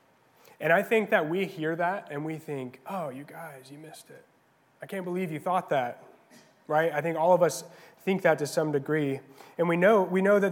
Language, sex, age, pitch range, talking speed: English, male, 20-39, 140-165 Hz, 225 wpm